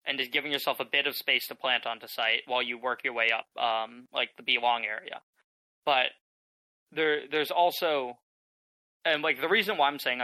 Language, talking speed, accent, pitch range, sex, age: English, 200 wpm, American, 125-155 Hz, male, 20-39